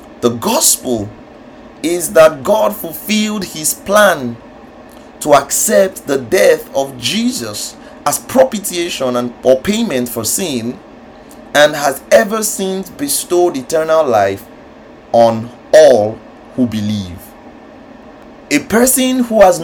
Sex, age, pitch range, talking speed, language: male, 30-49, 155-255 Hz, 105 wpm, English